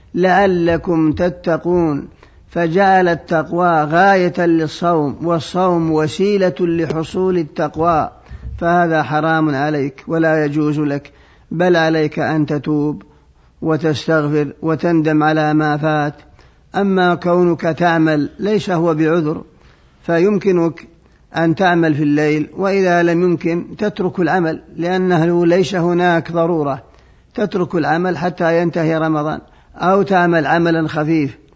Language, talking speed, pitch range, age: Arabic, 105 wpm, 155-175 Hz, 50-69